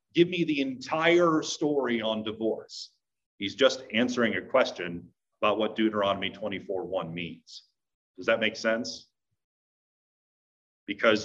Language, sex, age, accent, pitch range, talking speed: English, male, 40-59, American, 105-140 Hz, 115 wpm